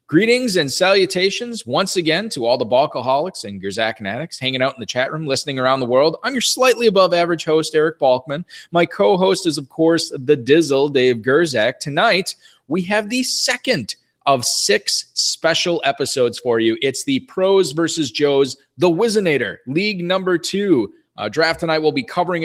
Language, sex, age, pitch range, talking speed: English, male, 20-39, 110-165 Hz, 175 wpm